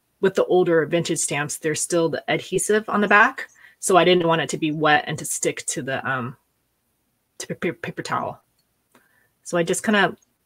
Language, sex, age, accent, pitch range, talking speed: English, female, 30-49, American, 155-185 Hz, 195 wpm